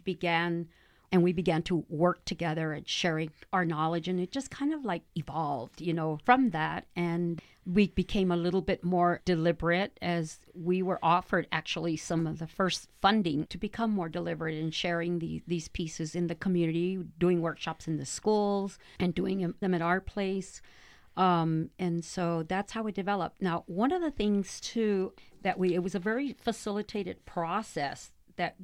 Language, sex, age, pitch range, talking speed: English, female, 50-69, 170-210 Hz, 180 wpm